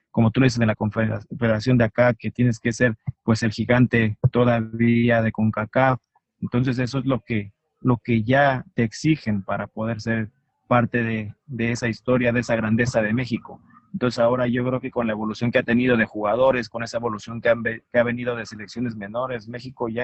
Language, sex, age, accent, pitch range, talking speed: Spanish, male, 40-59, Mexican, 110-125 Hz, 205 wpm